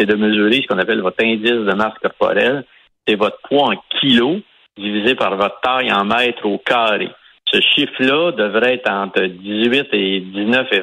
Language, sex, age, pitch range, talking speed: French, male, 50-69, 105-130 Hz, 175 wpm